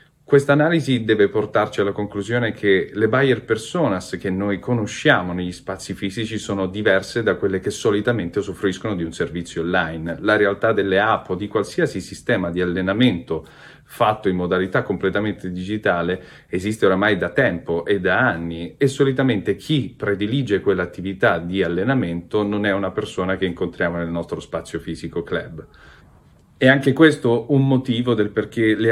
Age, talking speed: 40-59, 155 wpm